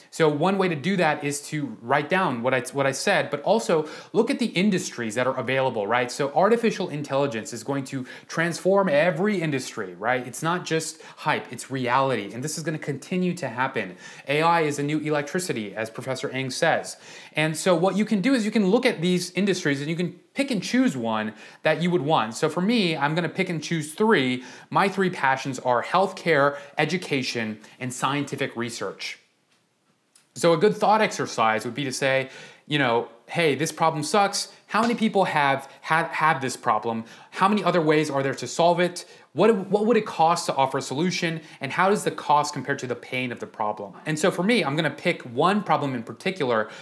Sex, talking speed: male, 210 wpm